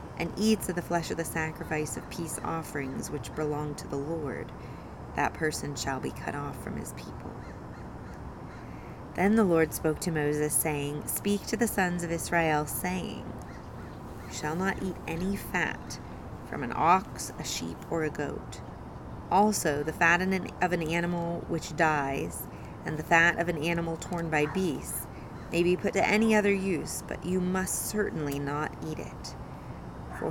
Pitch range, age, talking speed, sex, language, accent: 150-180 Hz, 30-49, 170 wpm, female, English, American